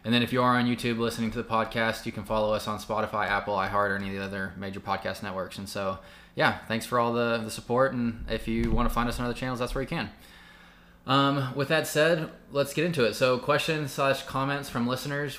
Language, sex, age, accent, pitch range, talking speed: English, male, 20-39, American, 105-125 Hz, 250 wpm